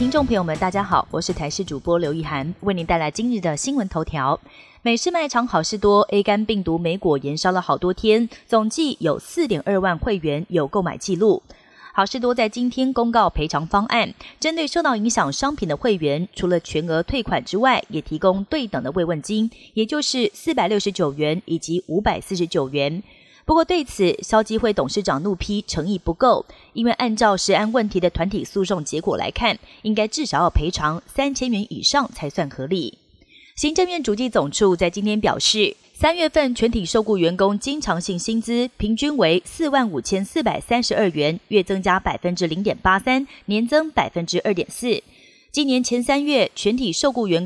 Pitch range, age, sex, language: 175-240 Hz, 30-49, female, Chinese